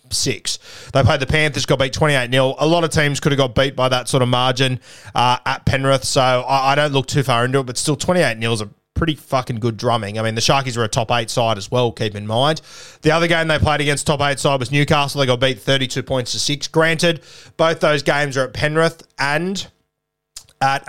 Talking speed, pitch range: 240 wpm, 125-155 Hz